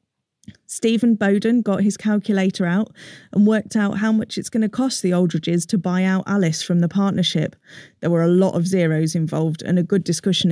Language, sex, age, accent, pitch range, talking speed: English, female, 30-49, British, 175-210 Hz, 200 wpm